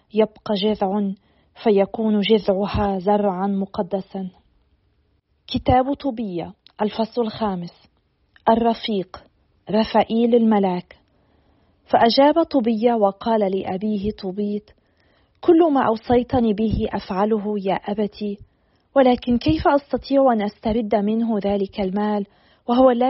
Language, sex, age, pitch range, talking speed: Arabic, female, 40-59, 205-240 Hz, 90 wpm